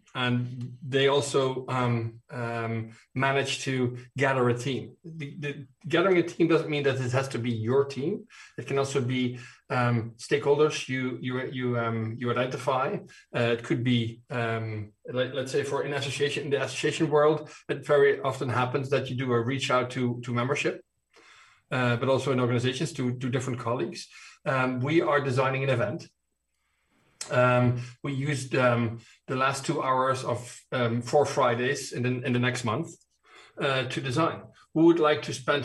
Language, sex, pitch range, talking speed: English, male, 120-140 Hz, 165 wpm